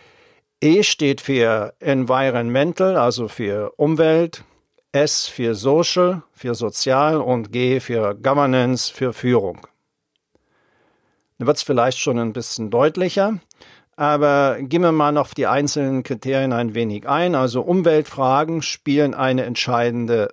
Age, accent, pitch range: 50-69, German, 120-145 Hz